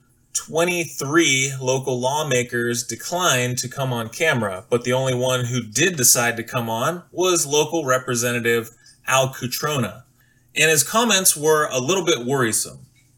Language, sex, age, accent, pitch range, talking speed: English, male, 30-49, American, 125-155 Hz, 140 wpm